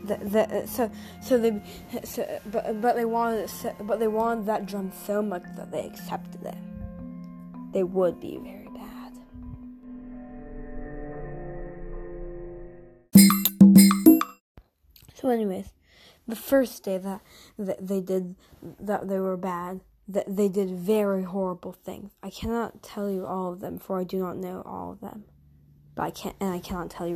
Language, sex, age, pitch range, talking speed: English, female, 20-39, 180-215 Hz, 155 wpm